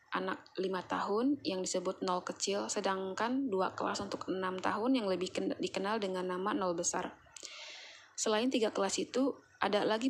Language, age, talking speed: Indonesian, 20-39, 155 wpm